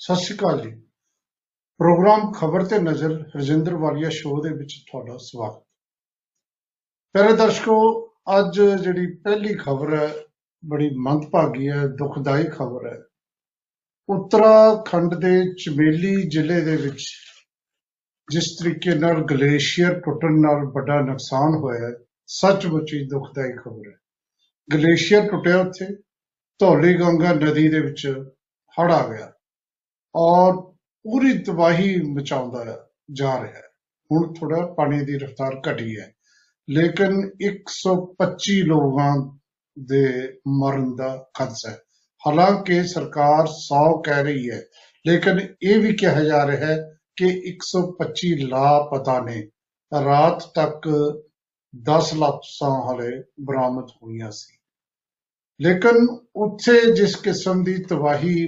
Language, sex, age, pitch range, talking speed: Punjabi, male, 50-69, 140-180 Hz, 105 wpm